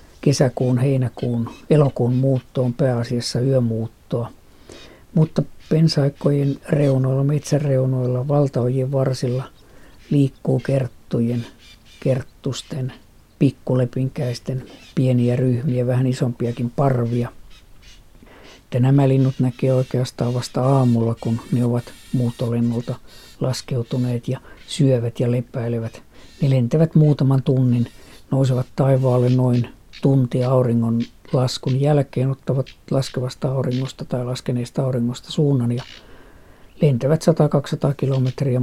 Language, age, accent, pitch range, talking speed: Finnish, 50-69, native, 120-135 Hz, 90 wpm